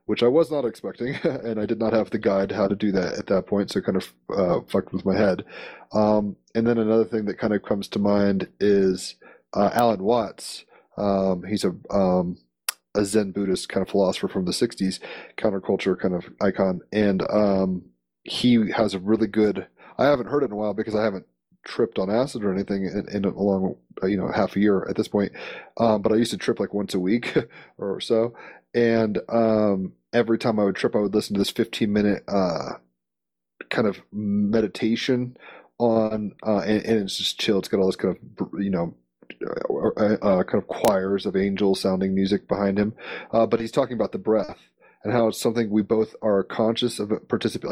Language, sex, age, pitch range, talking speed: English, male, 30-49, 95-110 Hz, 210 wpm